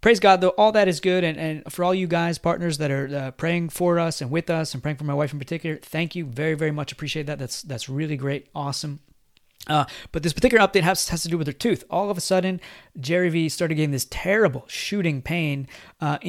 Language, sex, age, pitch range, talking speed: English, male, 30-49, 150-170 Hz, 245 wpm